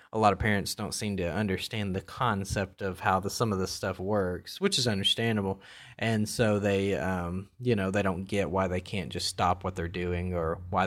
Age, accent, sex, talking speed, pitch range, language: 20-39, American, male, 220 wpm, 100-115 Hz, English